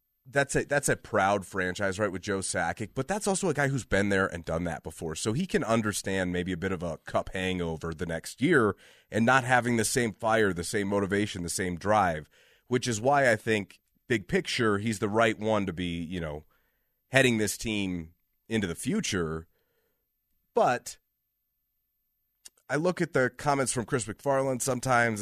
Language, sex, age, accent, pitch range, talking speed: English, male, 30-49, American, 95-115 Hz, 190 wpm